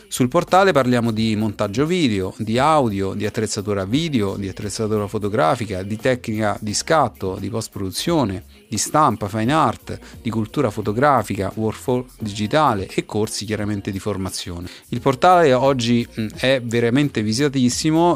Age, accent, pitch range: 40-59, native, 100-125 Hz